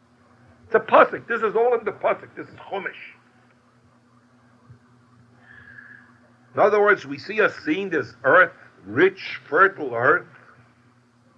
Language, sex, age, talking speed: English, male, 60-79, 125 wpm